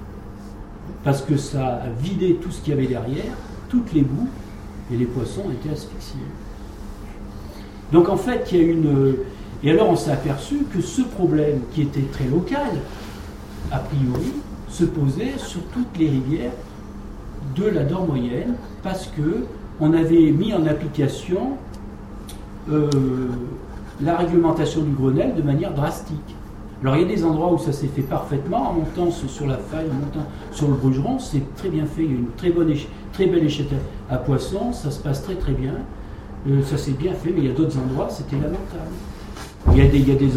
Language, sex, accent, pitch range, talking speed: French, male, French, 125-160 Hz, 190 wpm